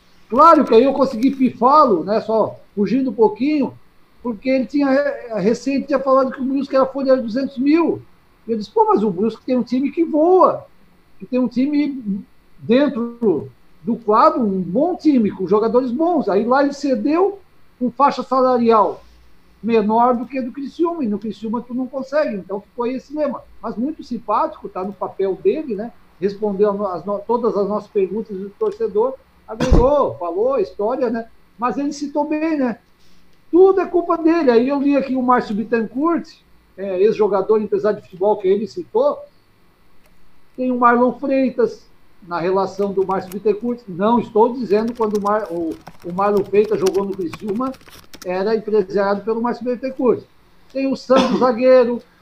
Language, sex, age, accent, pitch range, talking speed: Portuguese, male, 60-79, Brazilian, 210-275 Hz, 170 wpm